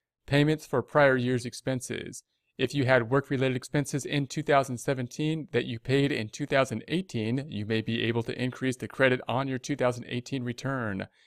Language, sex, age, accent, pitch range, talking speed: English, male, 40-59, American, 110-130 Hz, 155 wpm